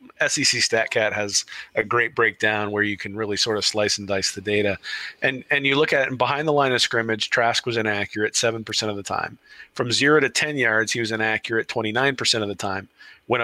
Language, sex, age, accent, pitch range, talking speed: English, male, 40-59, American, 110-130 Hz, 220 wpm